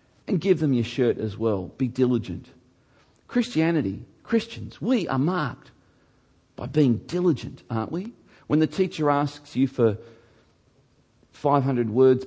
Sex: male